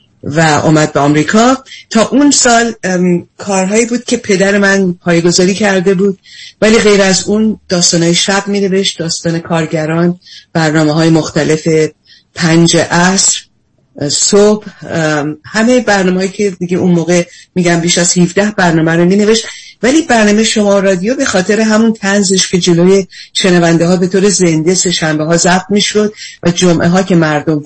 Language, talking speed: Persian, 150 wpm